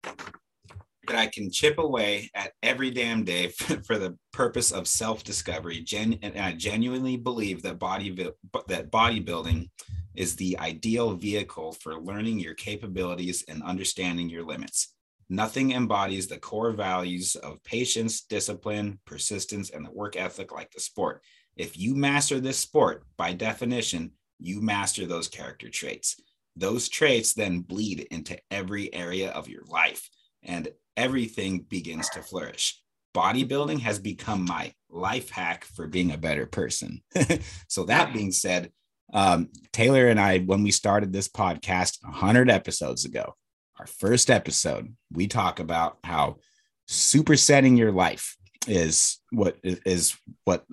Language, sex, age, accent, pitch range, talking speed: English, male, 30-49, American, 90-115 Hz, 140 wpm